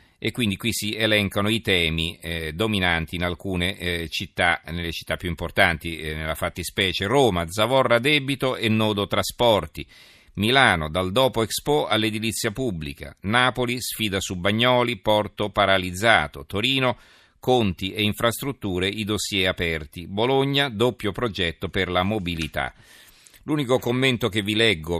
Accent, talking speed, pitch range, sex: native, 135 wpm, 90-115 Hz, male